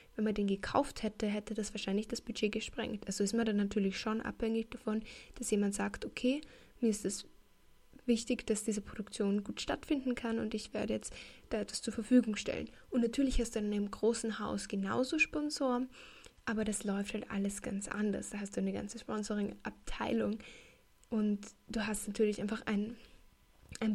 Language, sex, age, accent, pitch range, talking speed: German, female, 10-29, German, 215-240 Hz, 180 wpm